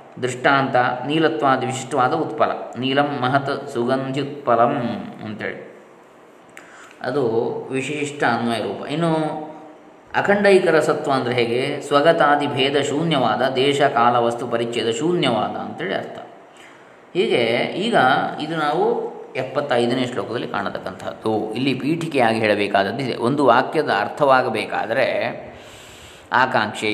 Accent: native